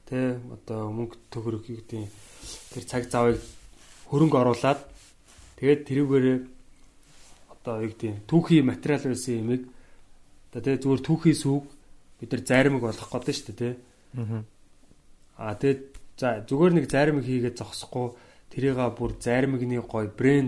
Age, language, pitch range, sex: 20-39, Korean, 105-135 Hz, male